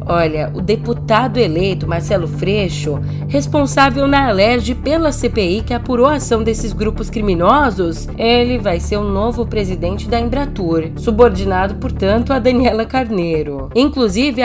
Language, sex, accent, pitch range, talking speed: Portuguese, female, Brazilian, 165-235 Hz, 135 wpm